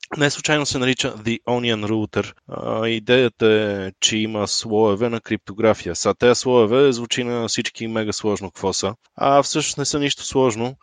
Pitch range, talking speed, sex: 105-125 Hz, 165 wpm, male